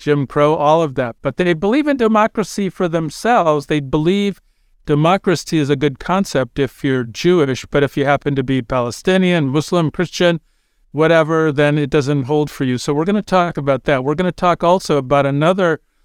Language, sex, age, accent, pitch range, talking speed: English, male, 50-69, American, 135-165 Hz, 195 wpm